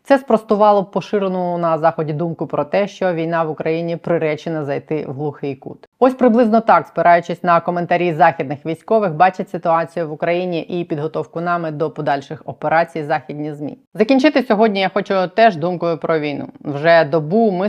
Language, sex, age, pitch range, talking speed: Ukrainian, female, 20-39, 150-175 Hz, 165 wpm